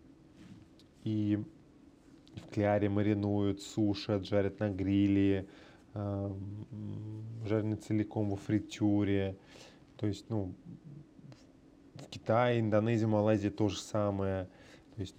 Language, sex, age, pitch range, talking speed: Russian, male, 20-39, 95-110 Hz, 90 wpm